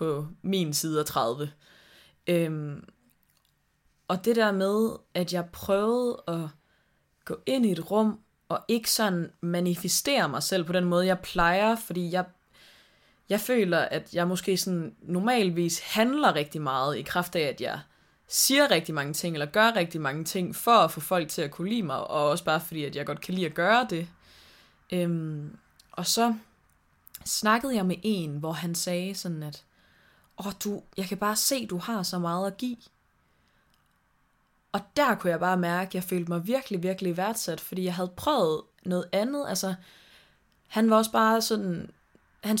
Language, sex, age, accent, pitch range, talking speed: Danish, female, 20-39, native, 165-210 Hz, 170 wpm